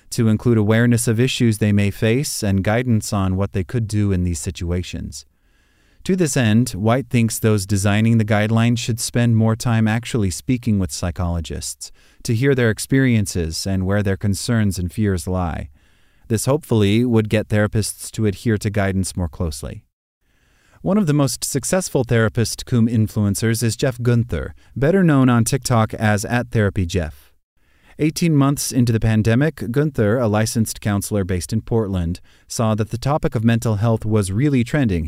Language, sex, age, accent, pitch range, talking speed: English, male, 30-49, American, 95-120 Hz, 165 wpm